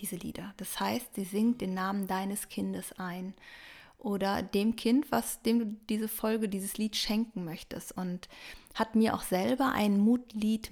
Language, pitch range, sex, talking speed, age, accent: German, 185-215 Hz, female, 170 wpm, 20-39, German